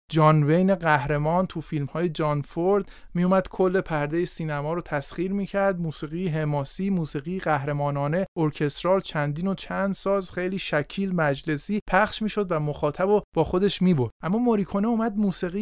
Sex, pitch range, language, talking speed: male, 150-190 Hz, Persian, 165 wpm